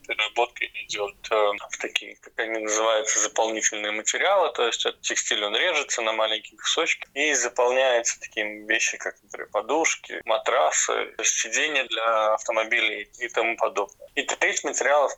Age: 20-39